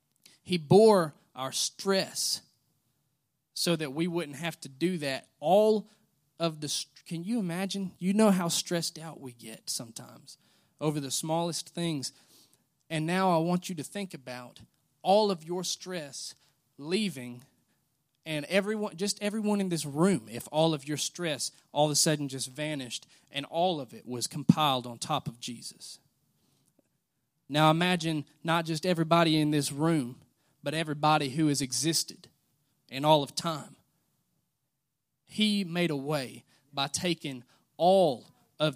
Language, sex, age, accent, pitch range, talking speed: English, male, 30-49, American, 140-175 Hz, 150 wpm